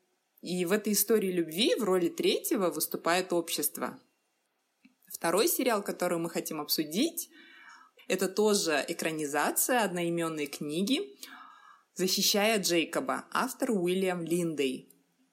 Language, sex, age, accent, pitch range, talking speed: Russian, female, 20-39, native, 165-230 Hz, 100 wpm